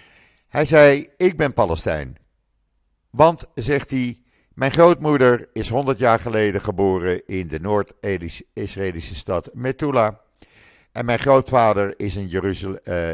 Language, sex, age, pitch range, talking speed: Dutch, male, 50-69, 85-120 Hz, 125 wpm